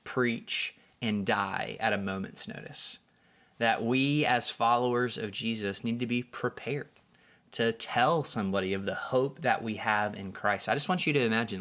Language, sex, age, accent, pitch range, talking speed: English, male, 20-39, American, 110-135 Hz, 175 wpm